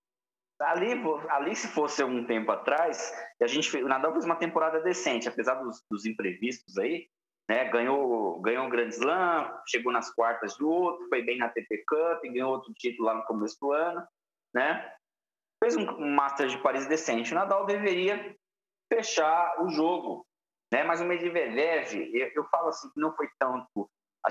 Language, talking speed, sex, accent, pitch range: Portuguese, 175 wpm, male, Brazilian, 120-180 Hz